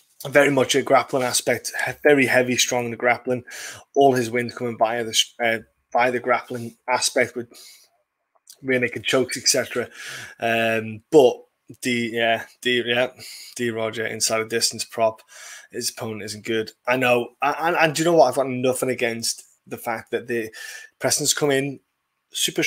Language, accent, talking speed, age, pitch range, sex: English, British, 175 wpm, 20-39, 115-135 Hz, male